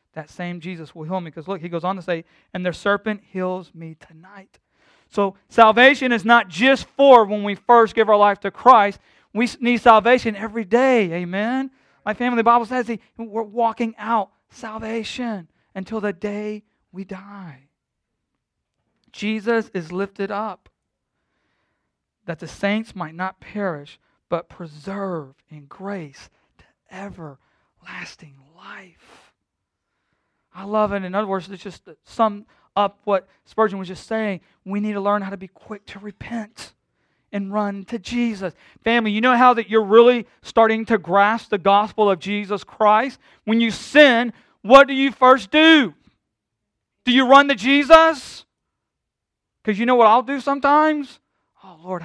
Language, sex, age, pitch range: English, male, 40-59, 185-230 Hz